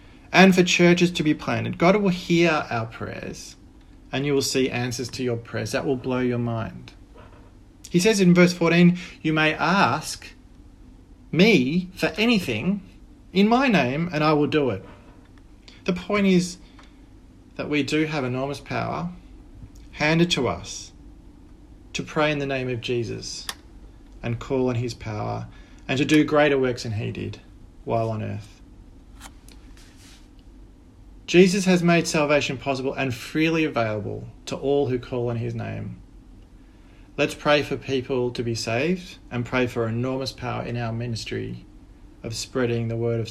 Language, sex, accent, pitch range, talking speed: English, male, Australian, 115-150 Hz, 155 wpm